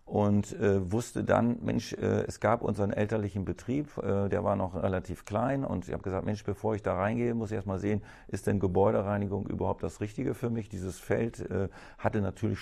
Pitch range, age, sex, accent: 95-110 Hz, 40-59, male, German